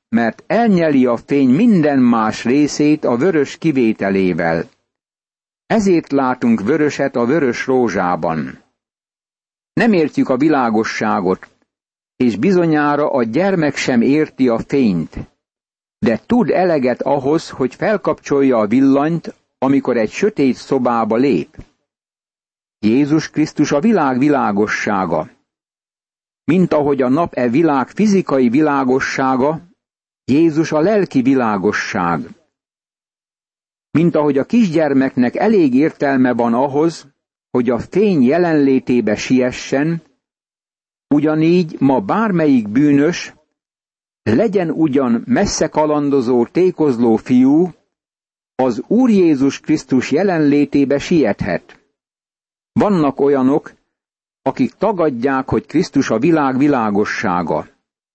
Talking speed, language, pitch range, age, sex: 100 wpm, Hungarian, 130-165 Hz, 60-79, male